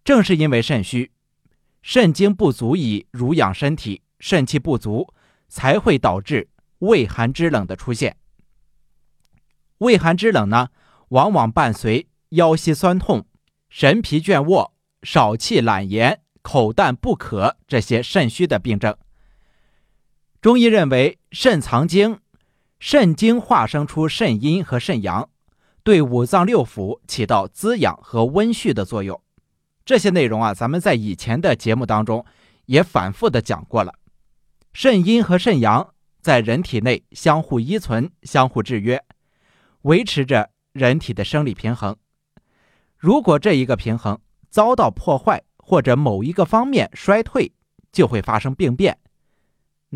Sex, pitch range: male, 115-180 Hz